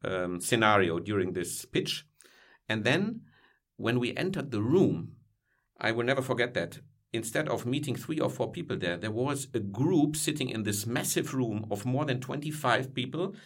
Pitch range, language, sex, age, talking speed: 110-145 Hz, Swedish, male, 50-69, 175 wpm